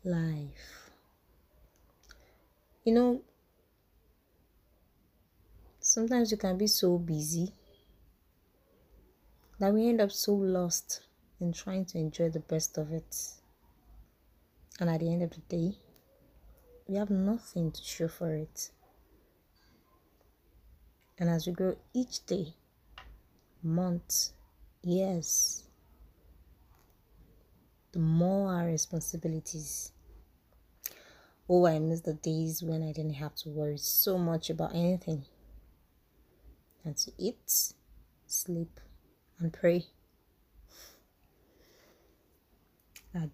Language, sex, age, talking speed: English, female, 20-39, 100 wpm